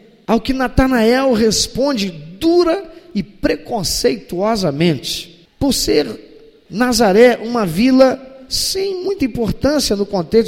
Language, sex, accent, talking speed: Portuguese, male, Brazilian, 95 wpm